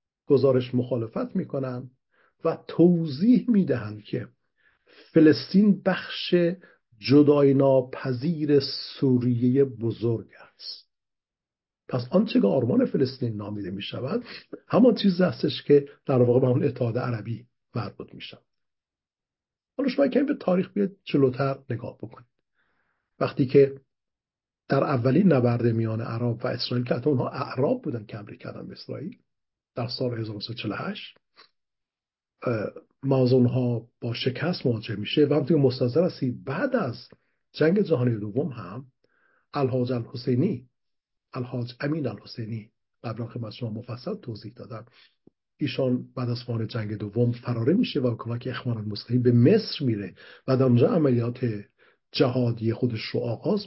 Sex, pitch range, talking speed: male, 120-150 Hz, 130 wpm